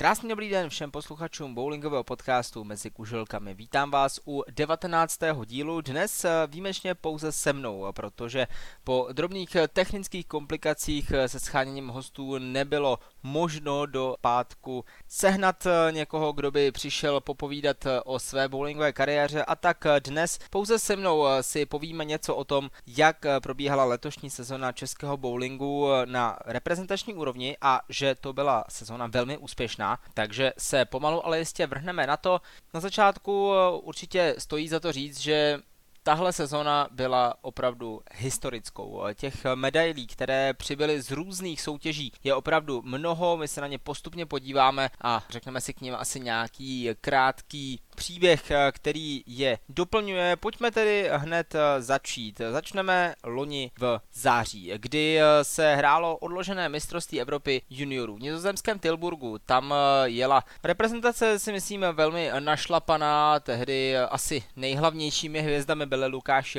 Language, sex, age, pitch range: Czech, male, 20-39, 130-165 Hz